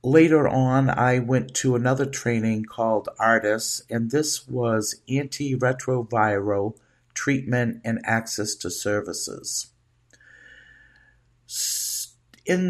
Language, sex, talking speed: English, male, 90 wpm